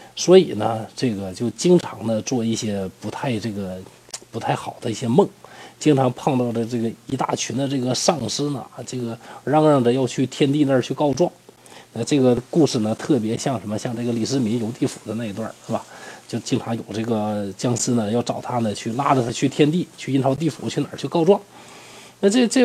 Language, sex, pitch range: Chinese, male, 120-175 Hz